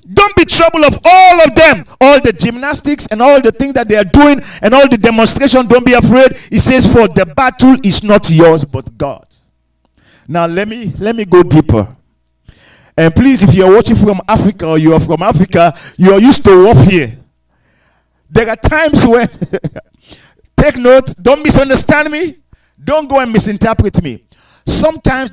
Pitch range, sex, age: 160-270 Hz, male, 50-69